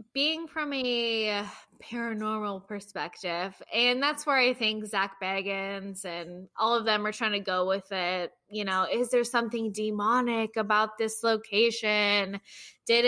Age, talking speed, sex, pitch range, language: 10-29, 145 wpm, female, 195-235 Hz, English